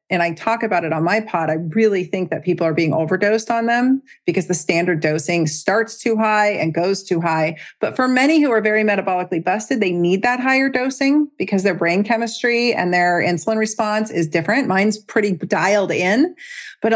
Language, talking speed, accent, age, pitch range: English, 200 wpm, American, 40-59, 170-215 Hz